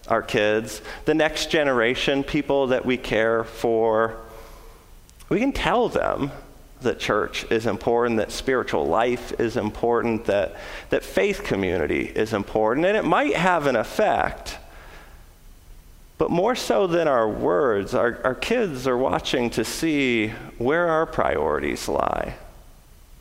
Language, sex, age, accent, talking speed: English, male, 40-59, American, 135 wpm